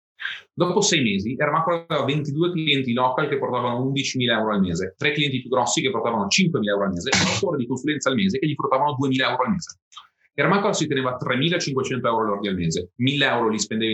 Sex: male